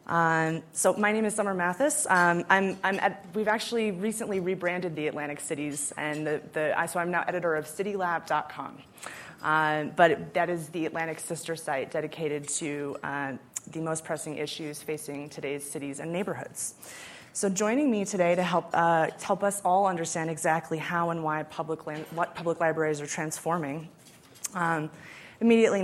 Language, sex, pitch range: English, female, 155-185 Hz